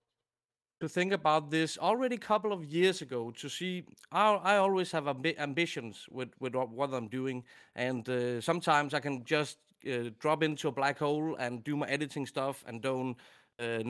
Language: English